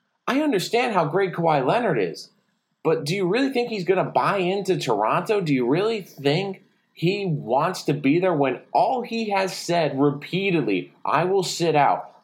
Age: 30-49